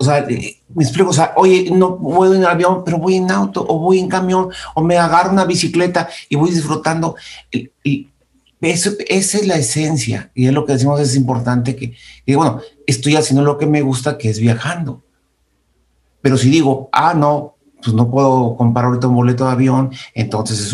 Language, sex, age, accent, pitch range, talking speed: Spanish, male, 50-69, Mexican, 125-155 Hz, 195 wpm